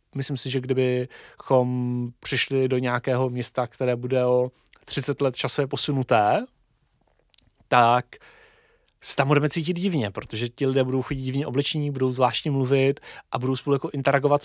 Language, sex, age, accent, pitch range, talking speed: Czech, male, 30-49, native, 115-140 Hz, 150 wpm